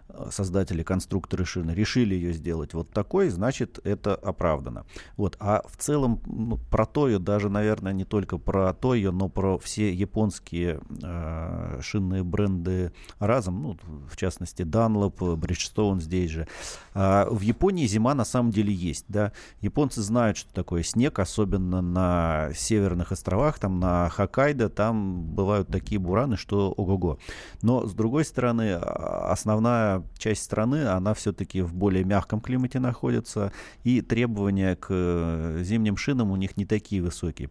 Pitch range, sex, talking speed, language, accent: 90-110 Hz, male, 145 wpm, Russian, native